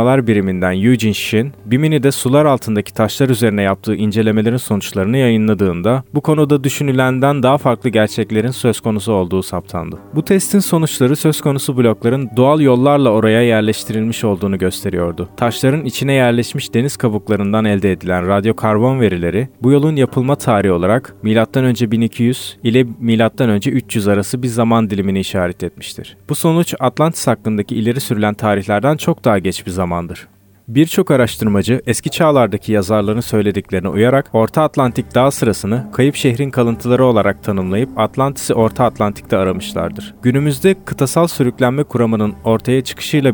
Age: 30-49